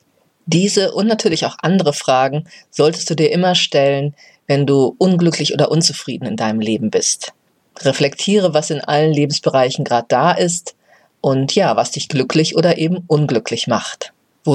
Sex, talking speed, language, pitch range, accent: female, 155 wpm, German, 140-170 Hz, German